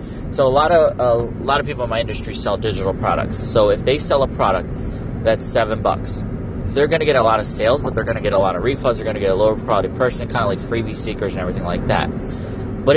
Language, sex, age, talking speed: English, male, 30-49, 270 wpm